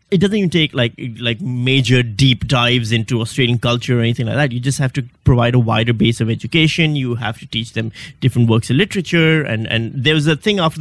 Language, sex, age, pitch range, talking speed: English, male, 30-49, 115-145 Hz, 235 wpm